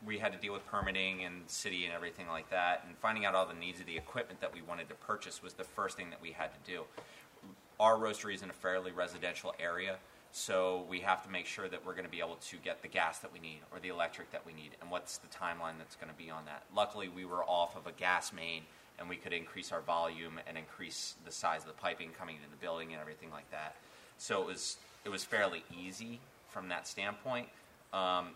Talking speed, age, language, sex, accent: 250 wpm, 30-49, English, male, American